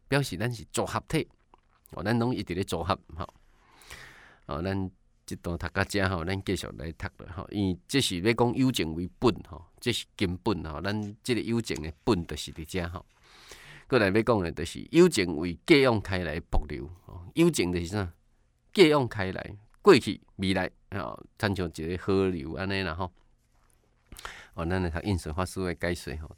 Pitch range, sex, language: 85-120 Hz, male, Chinese